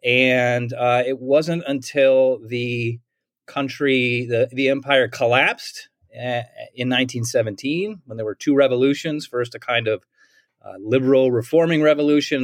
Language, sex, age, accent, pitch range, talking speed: English, male, 30-49, American, 120-150 Hz, 125 wpm